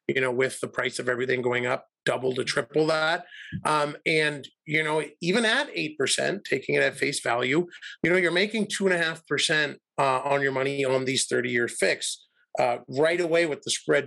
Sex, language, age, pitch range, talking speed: male, English, 30-49, 125-165 Hz, 185 wpm